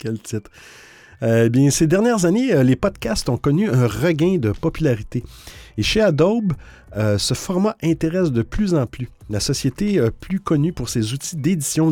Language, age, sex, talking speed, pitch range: French, 50-69, male, 175 wpm, 115-170 Hz